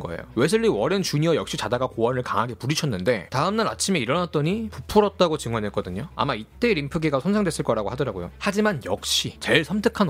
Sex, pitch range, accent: male, 135-210 Hz, native